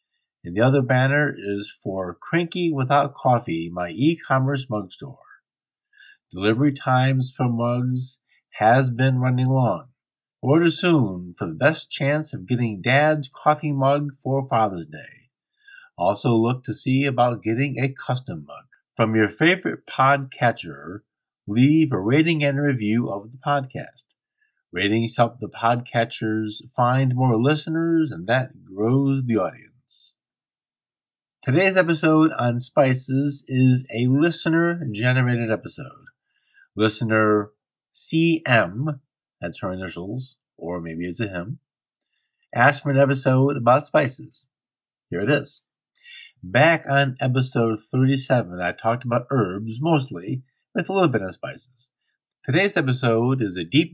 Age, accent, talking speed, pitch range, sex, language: 50-69, American, 130 wpm, 115-145 Hz, male, English